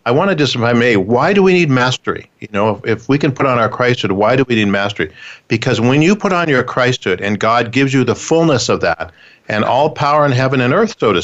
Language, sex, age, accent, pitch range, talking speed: English, male, 50-69, American, 110-140 Hz, 270 wpm